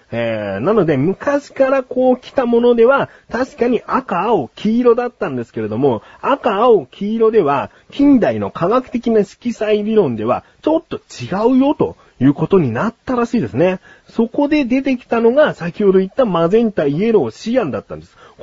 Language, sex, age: Japanese, male, 40-59